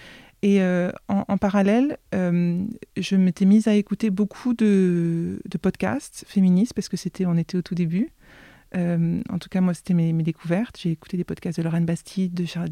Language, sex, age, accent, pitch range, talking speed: French, female, 30-49, French, 175-205 Hz, 200 wpm